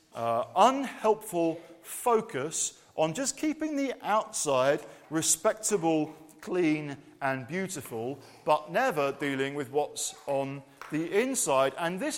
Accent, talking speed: British, 115 wpm